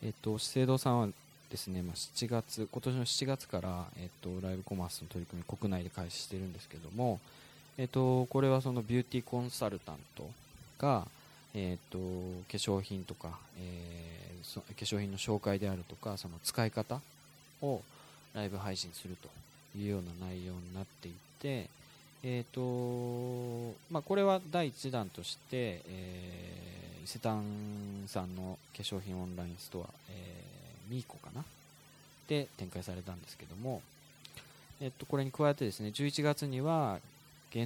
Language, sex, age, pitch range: Japanese, male, 20-39, 95-130 Hz